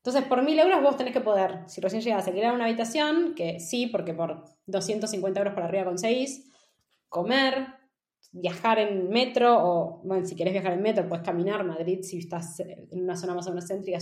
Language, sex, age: Spanish, female, 20-39